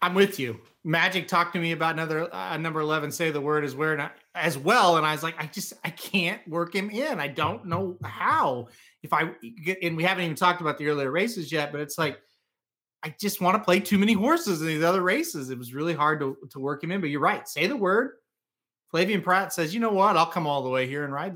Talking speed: 255 wpm